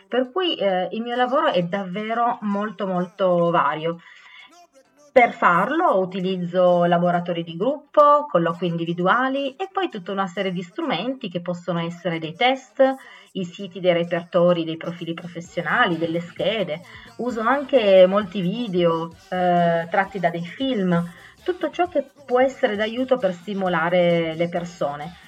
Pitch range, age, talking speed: 175-245 Hz, 30-49, 140 wpm